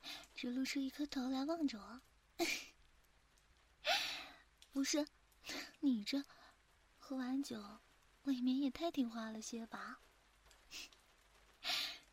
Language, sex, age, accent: Chinese, female, 30-49, native